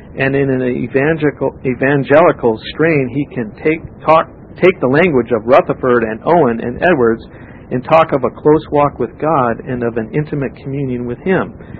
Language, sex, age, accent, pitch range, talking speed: English, male, 50-69, American, 120-150 Hz, 170 wpm